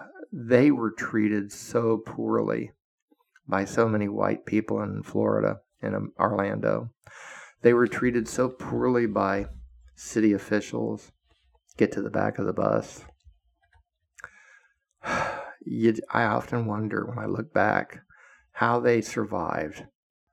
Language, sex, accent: English, male, American